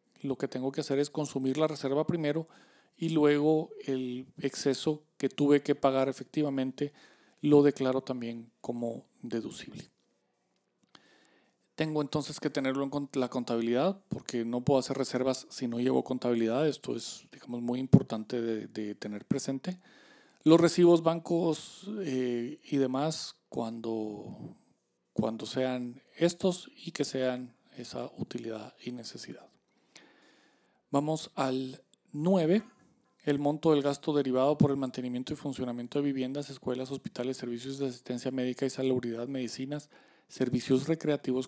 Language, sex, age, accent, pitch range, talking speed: Spanish, male, 40-59, Mexican, 130-155 Hz, 135 wpm